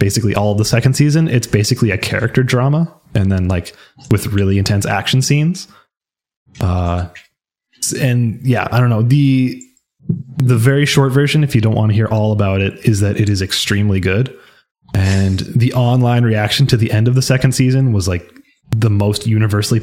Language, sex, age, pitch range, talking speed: English, male, 20-39, 105-130 Hz, 185 wpm